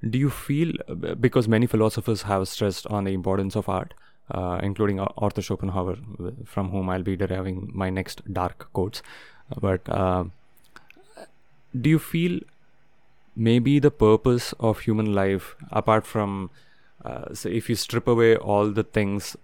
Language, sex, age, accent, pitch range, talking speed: English, male, 20-39, Indian, 95-115 Hz, 150 wpm